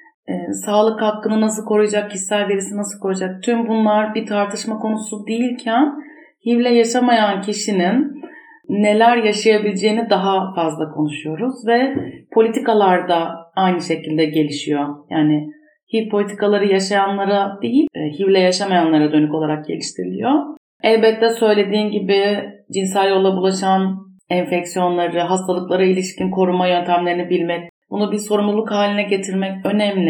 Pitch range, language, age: 175-220 Hz, Turkish, 40-59